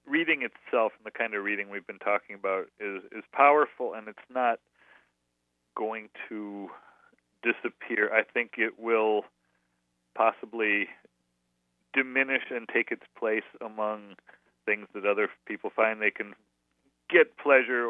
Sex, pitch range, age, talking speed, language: male, 100-130 Hz, 40-59, 135 wpm, English